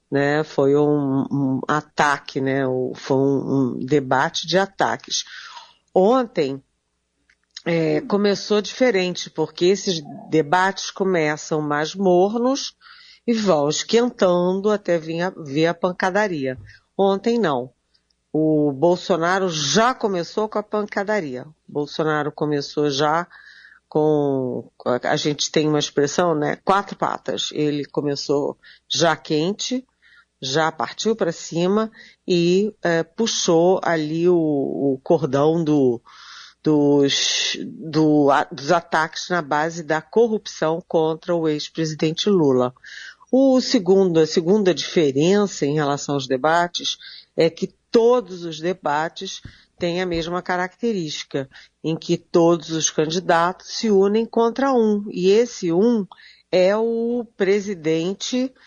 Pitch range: 150-200 Hz